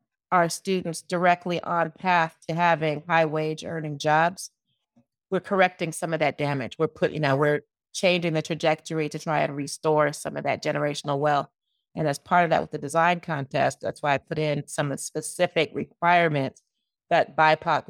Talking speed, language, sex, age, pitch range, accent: 185 wpm, English, female, 30-49, 145-165 Hz, American